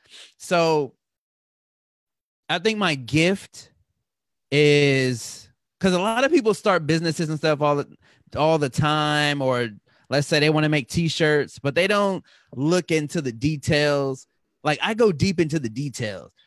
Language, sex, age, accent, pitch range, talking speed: English, male, 20-39, American, 135-175 Hz, 155 wpm